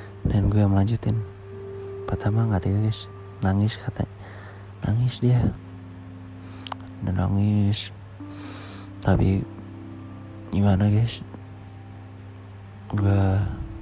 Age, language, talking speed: 20-39, Indonesian, 75 wpm